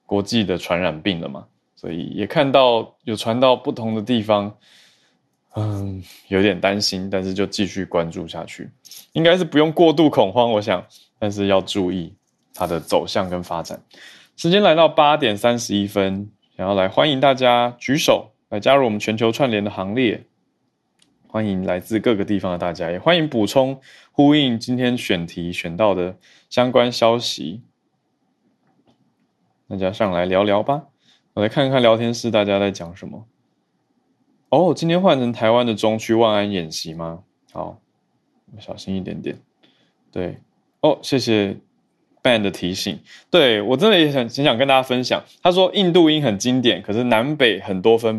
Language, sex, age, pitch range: Chinese, male, 20-39, 100-140 Hz